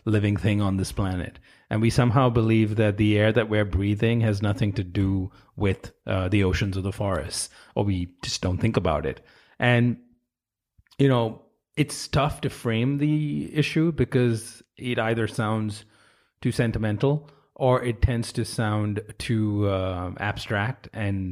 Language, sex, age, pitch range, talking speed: English, male, 30-49, 100-120 Hz, 160 wpm